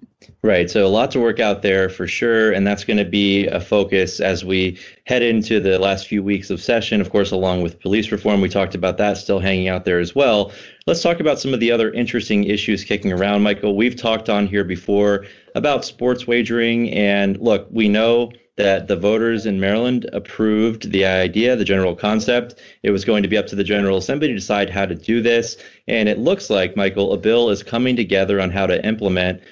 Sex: male